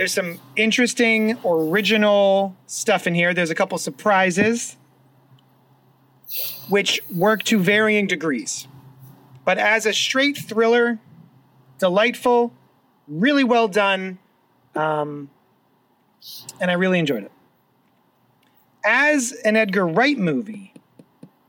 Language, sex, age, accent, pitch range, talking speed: English, male, 30-49, American, 155-215 Hz, 100 wpm